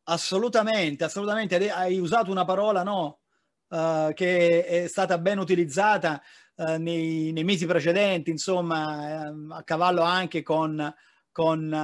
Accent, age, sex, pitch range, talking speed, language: native, 30-49, male, 160-185 Hz, 125 wpm, Italian